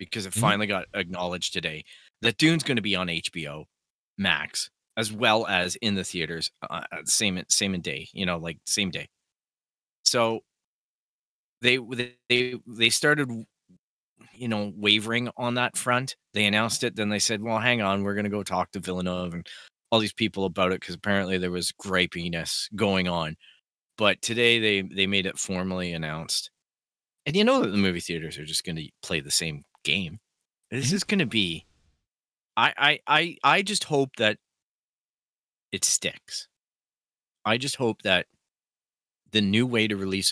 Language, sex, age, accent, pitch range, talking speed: English, male, 30-49, American, 90-115 Hz, 170 wpm